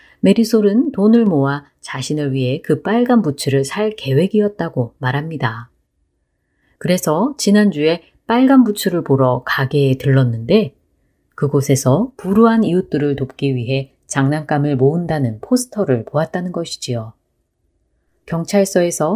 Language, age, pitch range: Korean, 30-49, 130-195 Hz